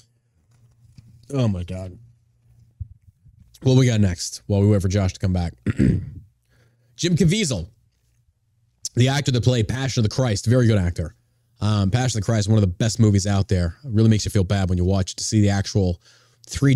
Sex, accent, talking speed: male, American, 205 wpm